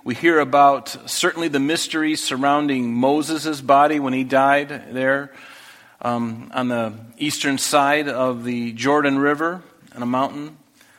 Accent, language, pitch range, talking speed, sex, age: American, English, 120-150 Hz, 135 wpm, male, 40-59